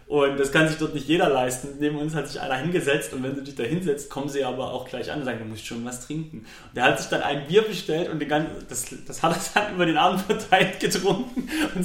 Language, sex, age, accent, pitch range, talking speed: German, male, 30-49, German, 125-195 Hz, 280 wpm